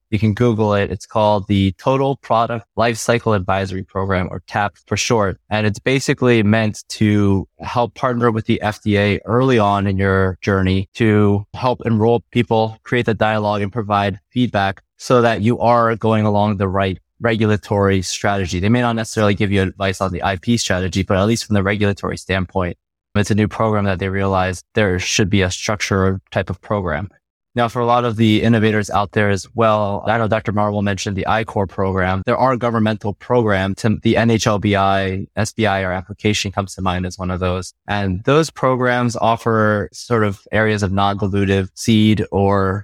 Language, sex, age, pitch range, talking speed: English, male, 20-39, 95-115 Hz, 185 wpm